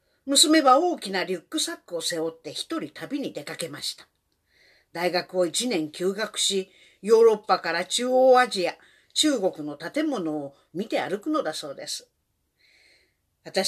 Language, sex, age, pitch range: Japanese, female, 50-69, 180-285 Hz